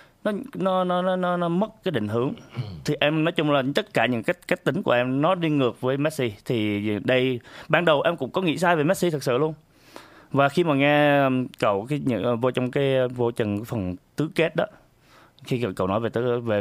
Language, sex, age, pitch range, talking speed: Vietnamese, male, 20-39, 110-145 Hz, 225 wpm